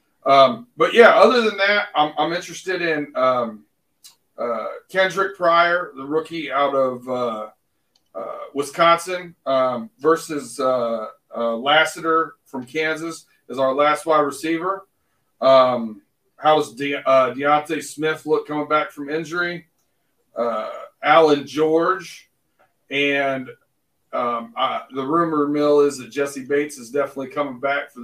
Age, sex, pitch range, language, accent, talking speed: 40-59, male, 135-160 Hz, English, American, 135 wpm